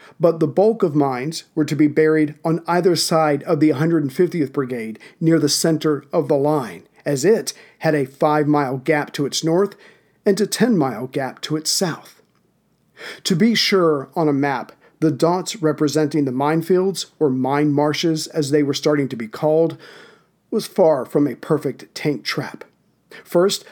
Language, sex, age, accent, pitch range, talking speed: English, male, 50-69, American, 150-170 Hz, 175 wpm